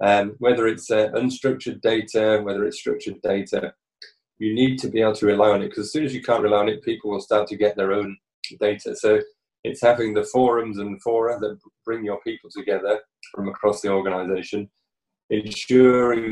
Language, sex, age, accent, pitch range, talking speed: English, male, 20-39, British, 105-125 Hz, 195 wpm